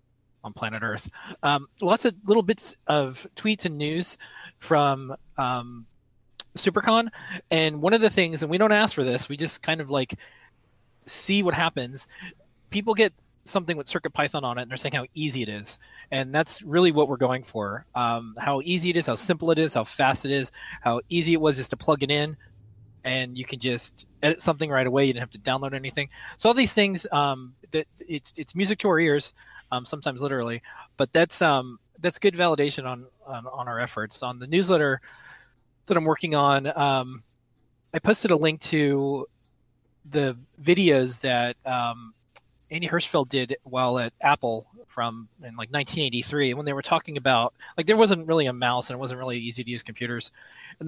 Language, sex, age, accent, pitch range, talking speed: English, male, 30-49, American, 125-160 Hz, 195 wpm